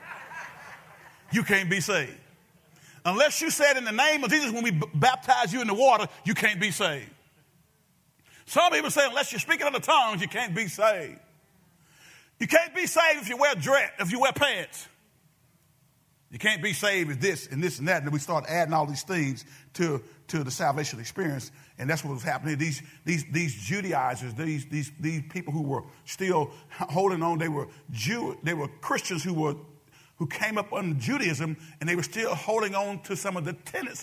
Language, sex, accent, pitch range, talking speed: English, male, American, 150-215 Hz, 200 wpm